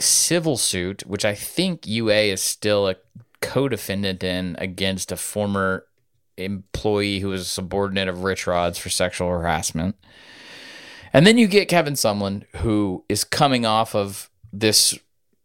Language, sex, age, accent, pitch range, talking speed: English, male, 20-39, American, 95-110 Hz, 145 wpm